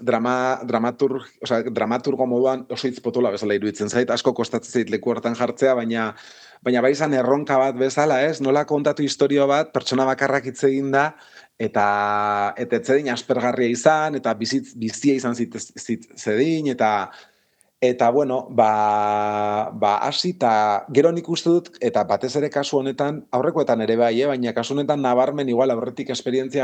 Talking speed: 150 wpm